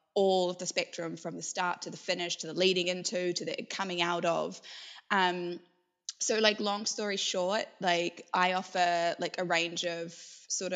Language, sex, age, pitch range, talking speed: English, female, 20-39, 170-195 Hz, 185 wpm